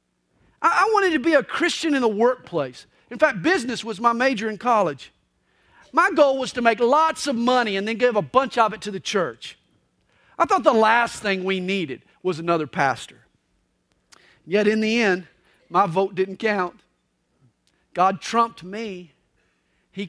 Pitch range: 190-280 Hz